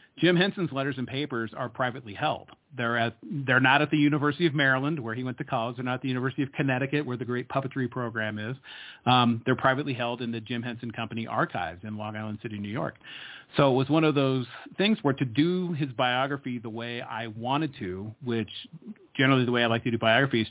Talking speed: 220 wpm